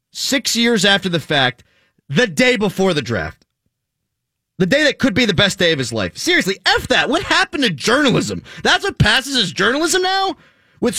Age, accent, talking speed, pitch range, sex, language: 30-49, American, 190 wpm, 180-255 Hz, male, English